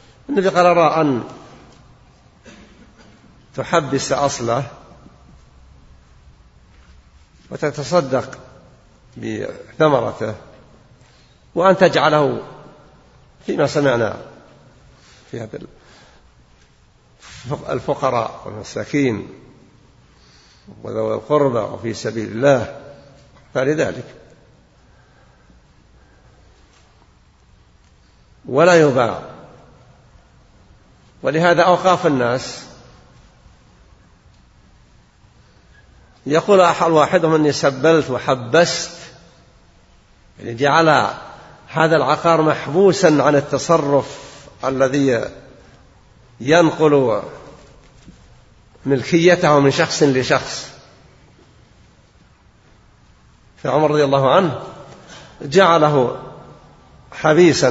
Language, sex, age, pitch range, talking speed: Arabic, male, 60-79, 105-160 Hz, 55 wpm